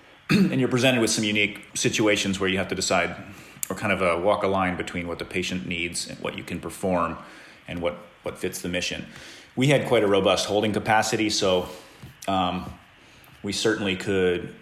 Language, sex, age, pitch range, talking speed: English, male, 30-49, 90-100 Hz, 195 wpm